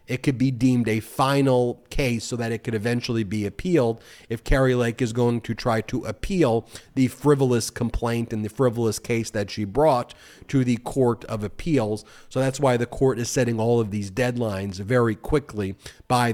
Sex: male